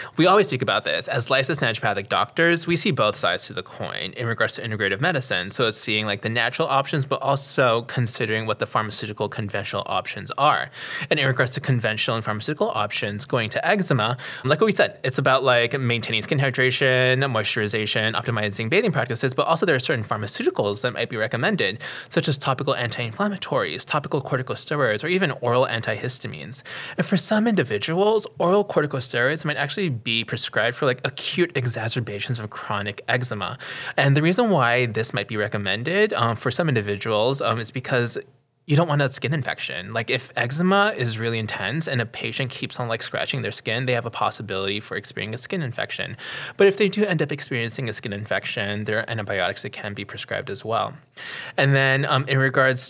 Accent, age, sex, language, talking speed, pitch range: American, 20-39, male, English, 190 wpm, 110-150 Hz